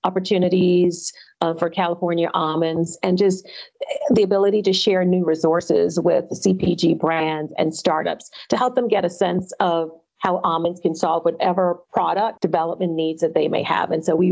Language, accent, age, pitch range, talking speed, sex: English, American, 40-59, 165-200 Hz, 170 wpm, female